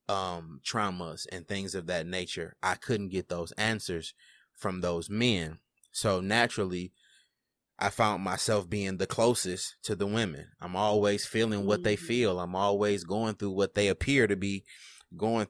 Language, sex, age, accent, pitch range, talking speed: English, male, 20-39, American, 90-100 Hz, 165 wpm